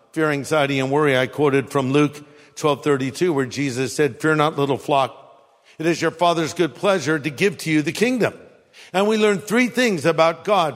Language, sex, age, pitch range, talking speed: English, male, 50-69, 160-225 Hz, 195 wpm